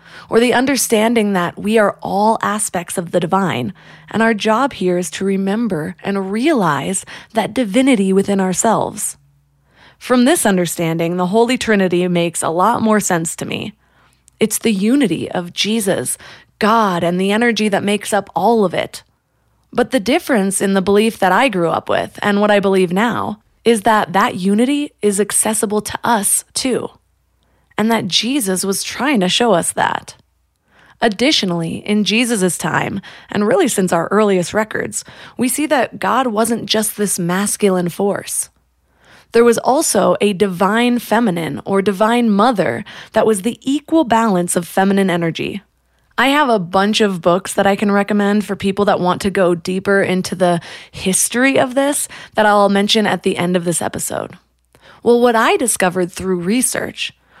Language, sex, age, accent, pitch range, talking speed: English, female, 20-39, American, 185-230 Hz, 165 wpm